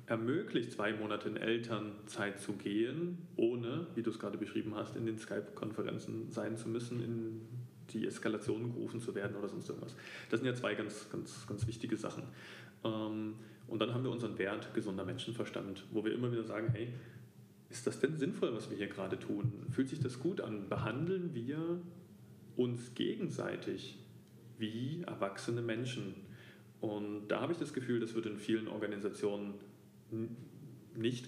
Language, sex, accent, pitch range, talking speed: German, male, German, 105-125 Hz, 165 wpm